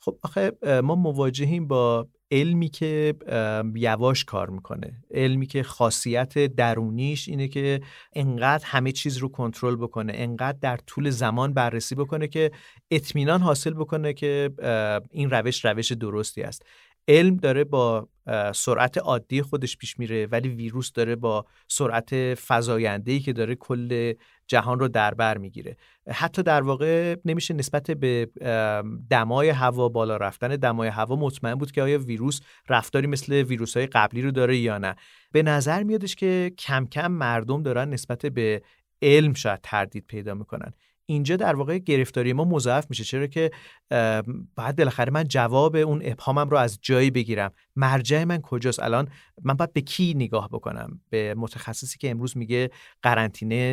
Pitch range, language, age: 115-145 Hz, Persian, 40-59